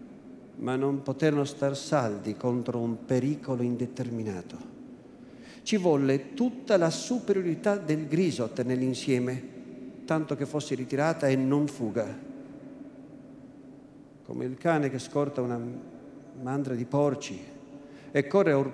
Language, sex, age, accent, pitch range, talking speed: Italian, male, 50-69, native, 140-195 Hz, 115 wpm